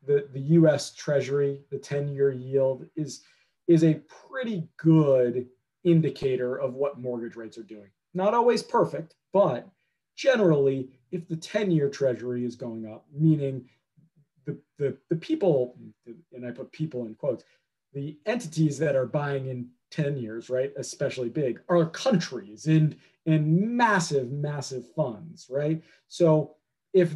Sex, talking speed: male, 135 wpm